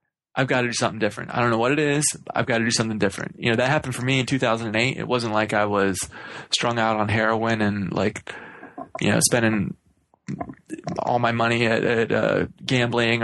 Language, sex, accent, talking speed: English, male, American, 215 wpm